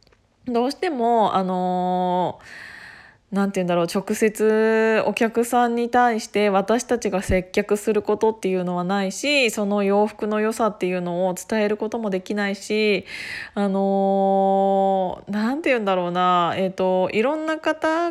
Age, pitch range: 20-39, 185-220 Hz